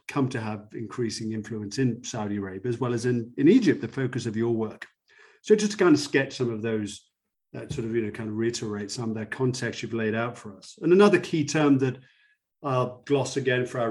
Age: 40-59